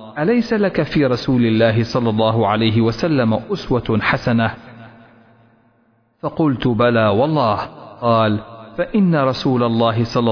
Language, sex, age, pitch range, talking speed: Arabic, male, 40-59, 110-160 Hz, 110 wpm